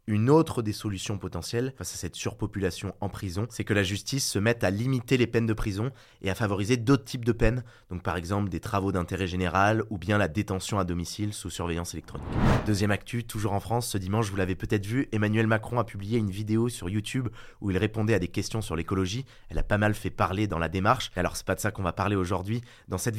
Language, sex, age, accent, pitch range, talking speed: French, male, 20-39, French, 100-120 Hz, 240 wpm